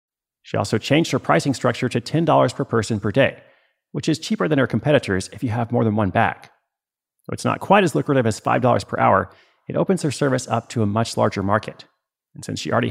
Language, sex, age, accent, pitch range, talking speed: English, male, 30-49, American, 110-140 Hz, 230 wpm